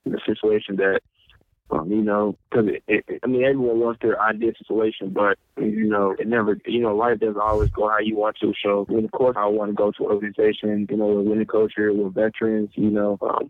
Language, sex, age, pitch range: English, male, 20-39, 105-110 Hz